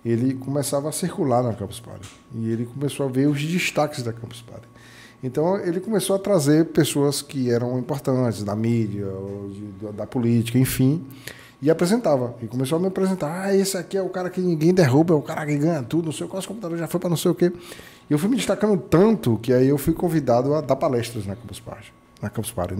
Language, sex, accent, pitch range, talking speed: Portuguese, male, Brazilian, 115-155 Hz, 225 wpm